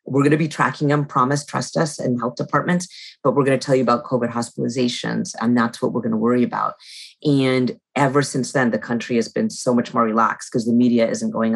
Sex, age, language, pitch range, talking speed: female, 30-49, English, 120-140 Hz, 240 wpm